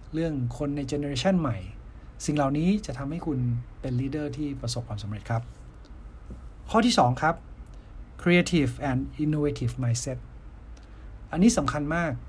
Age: 60-79